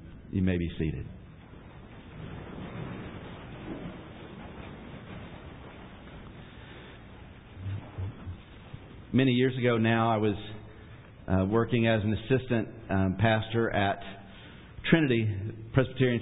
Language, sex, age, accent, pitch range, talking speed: English, male, 50-69, American, 105-130 Hz, 75 wpm